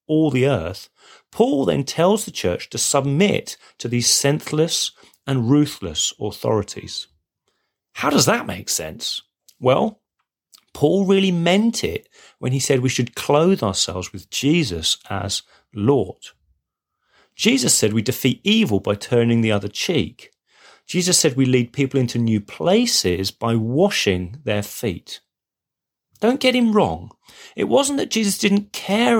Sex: male